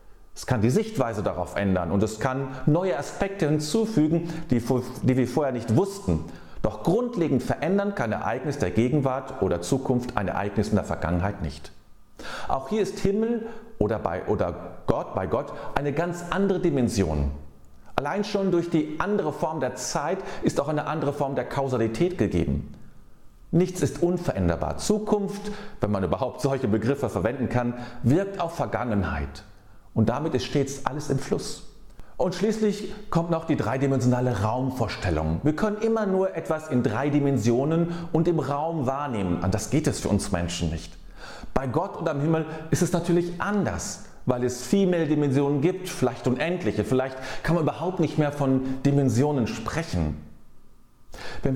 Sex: male